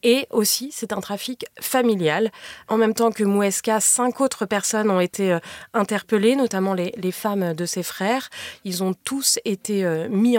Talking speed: 170 wpm